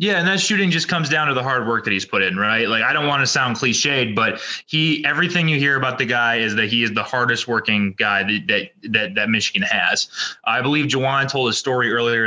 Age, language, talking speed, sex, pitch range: 20-39, English, 255 wpm, male, 110-135 Hz